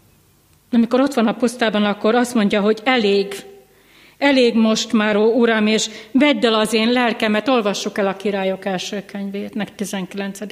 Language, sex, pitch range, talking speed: Hungarian, female, 200-230 Hz, 165 wpm